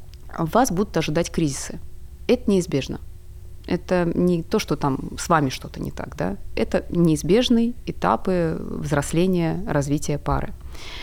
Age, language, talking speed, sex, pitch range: 30-49, Russian, 125 wpm, female, 145-180 Hz